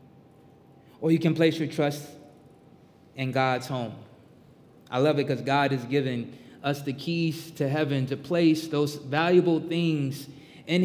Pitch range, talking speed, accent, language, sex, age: 130-160 Hz, 150 wpm, American, English, male, 20-39